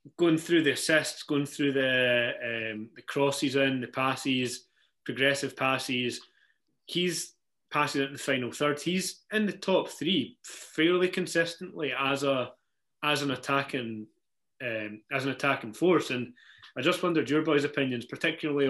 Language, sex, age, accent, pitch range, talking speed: English, male, 30-49, British, 125-150 Hz, 150 wpm